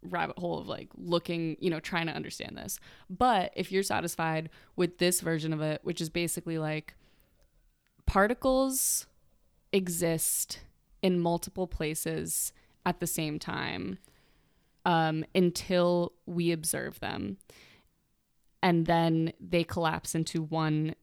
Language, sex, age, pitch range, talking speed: English, female, 20-39, 160-185 Hz, 125 wpm